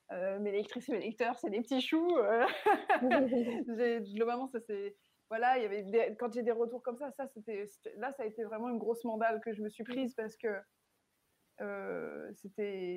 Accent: French